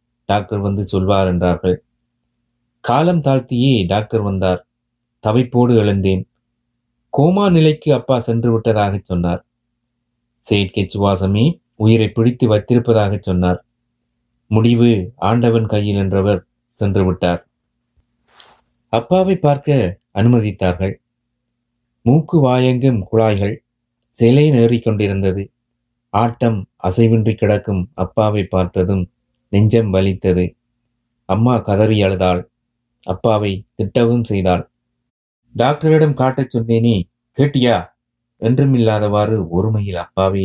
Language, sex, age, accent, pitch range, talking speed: Tamil, male, 30-49, native, 100-120 Hz, 85 wpm